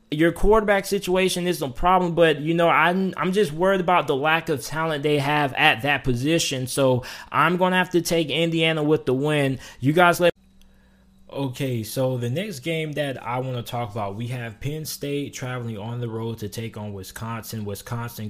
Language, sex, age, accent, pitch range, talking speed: English, male, 20-39, American, 120-155 Hz, 195 wpm